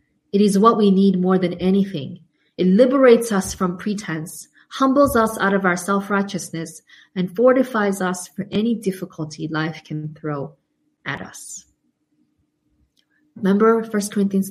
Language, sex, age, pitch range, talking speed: English, female, 20-39, 185-240 Hz, 135 wpm